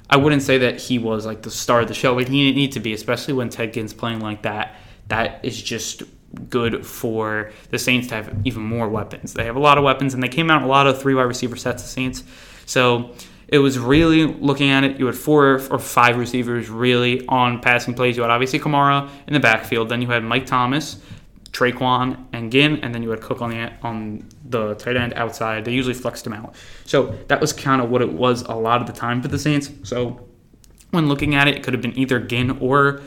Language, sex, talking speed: English, male, 240 wpm